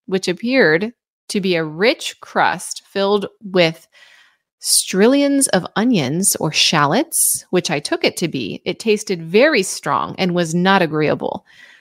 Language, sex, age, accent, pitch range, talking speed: English, female, 30-49, American, 165-225 Hz, 140 wpm